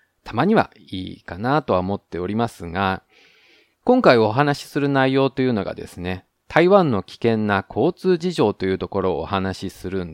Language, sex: Japanese, male